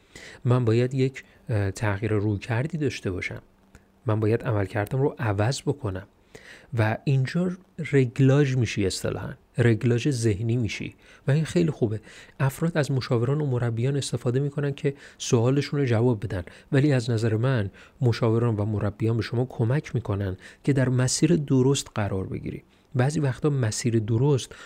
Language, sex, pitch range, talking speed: Persian, male, 110-135 Hz, 145 wpm